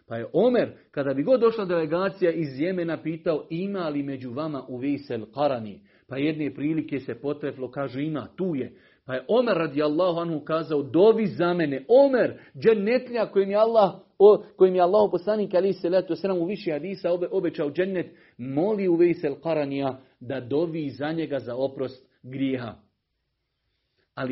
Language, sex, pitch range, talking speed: Croatian, male, 135-185 Hz, 160 wpm